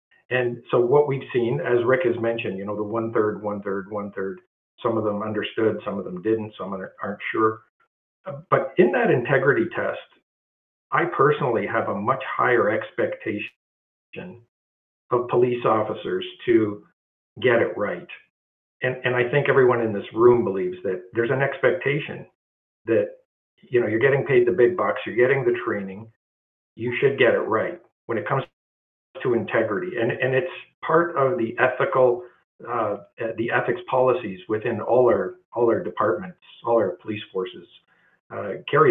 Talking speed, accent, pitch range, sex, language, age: 170 wpm, American, 105-165 Hz, male, English, 50-69